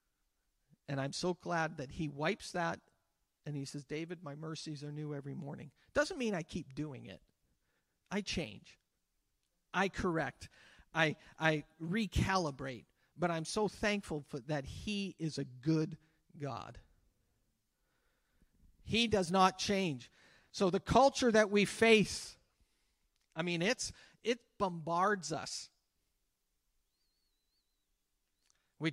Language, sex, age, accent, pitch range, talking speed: English, male, 50-69, American, 155-210 Hz, 120 wpm